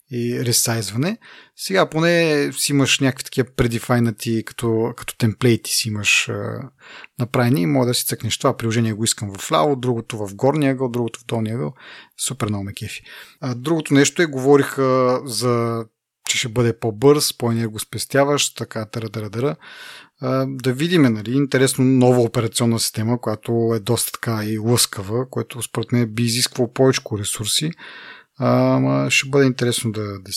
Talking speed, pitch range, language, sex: 145 wpm, 115-135 Hz, Bulgarian, male